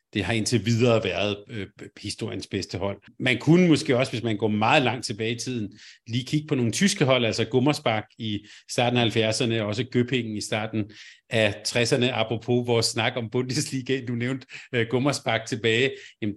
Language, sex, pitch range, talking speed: Danish, male, 105-130 Hz, 185 wpm